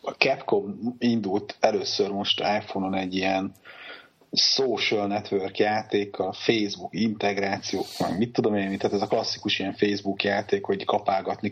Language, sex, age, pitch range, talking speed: Hungarian, male, 30-49, 95-105 Hz, 140 wpm